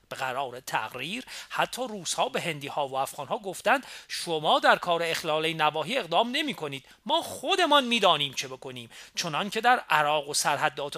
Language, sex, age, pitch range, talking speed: Persian, male, 40-59, 145-200 Hz, 160 wpm